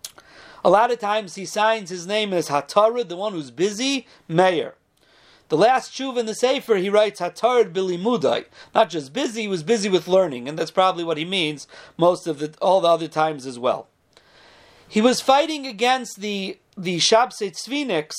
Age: 40-59